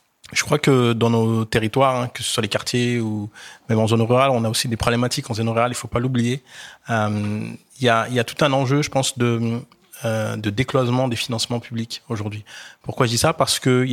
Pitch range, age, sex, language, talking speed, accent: 115-130 Hz, 30-49, male, French, 235 wpm, French